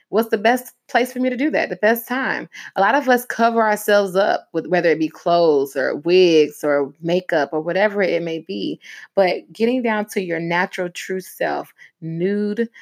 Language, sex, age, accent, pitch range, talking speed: English, female, 20-39, American, 165-210 Hz, 195 wpm